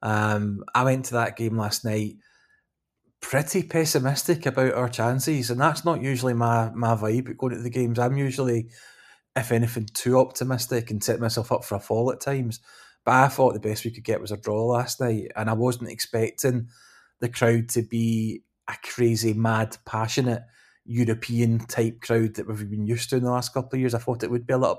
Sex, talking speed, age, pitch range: male, 205 wpm, 20-39, 115-125 Hz